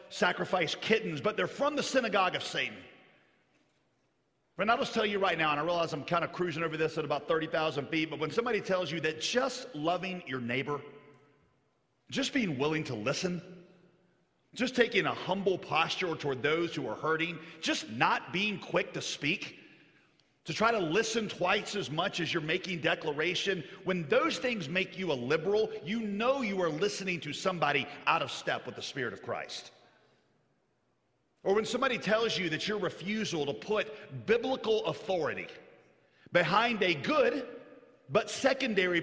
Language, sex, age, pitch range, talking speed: English, male, 40-59, 160-215 Hz, 170 wpm